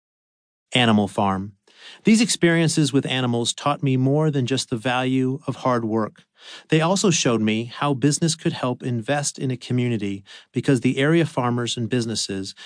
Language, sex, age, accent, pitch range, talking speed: English, male, 40-59, American, 105-135 Hz, 160 wpm